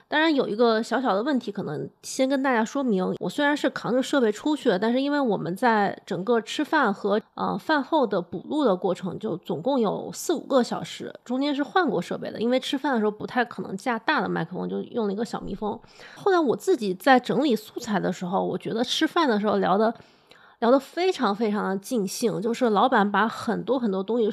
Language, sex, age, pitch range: Chinese, female, 20-39, 205-275 Hz